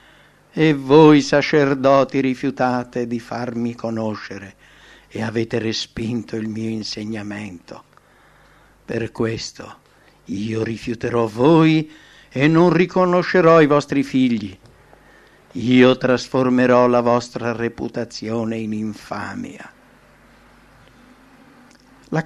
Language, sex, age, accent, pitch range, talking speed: English, male, 60-79, Italian, 115-145 Hz, 85 wpm